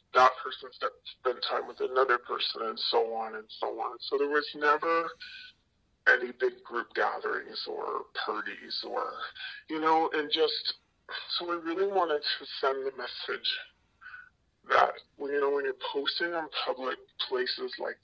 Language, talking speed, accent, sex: English, 155 wpm, American, female